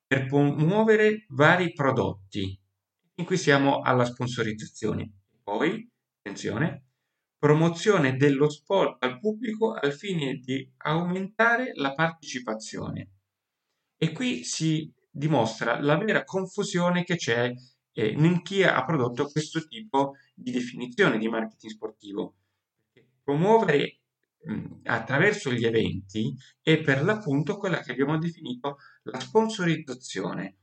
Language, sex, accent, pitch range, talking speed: Italian, male, native, 115-180 Hz, 110 wpm